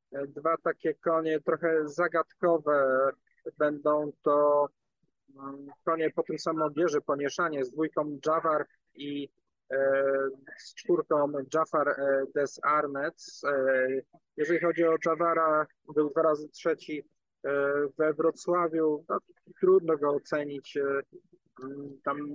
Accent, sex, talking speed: native, male, 105 wpm